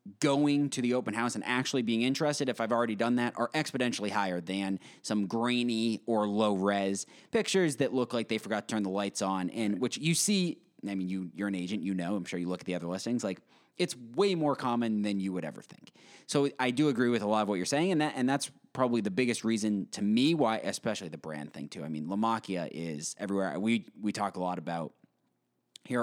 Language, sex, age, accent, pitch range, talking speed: English, male, 30-49, American, 95-120 Hz, 240 wpm